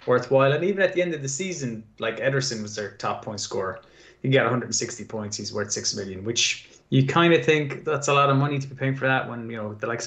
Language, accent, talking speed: English, Irish, 260 wpm